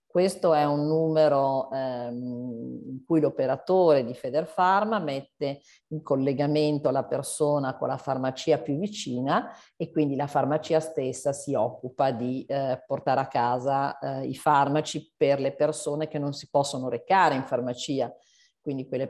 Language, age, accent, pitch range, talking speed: Italian, 50-69, native, 125-150 Hz, 150 wpm